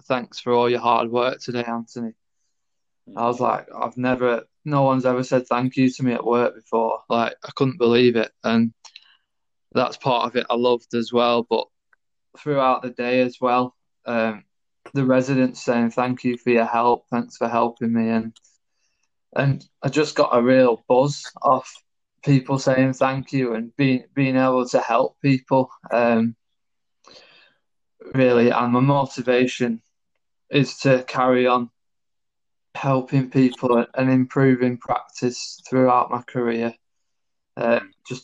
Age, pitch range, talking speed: 20-39, 115-130 Hz, 150 wpm